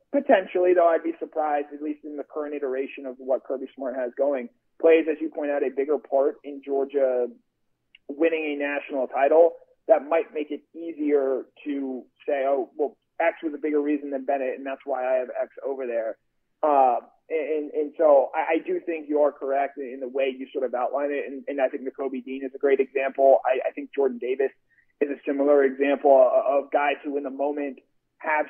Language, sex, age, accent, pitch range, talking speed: English, male, 30-49, American, 135-165 Hz, 205 wpm